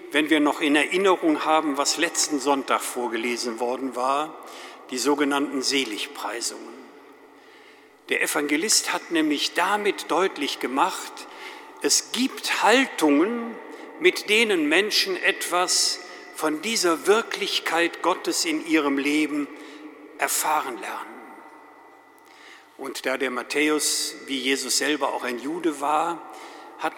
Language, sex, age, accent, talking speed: German, male, 50-69, German, 110 wpm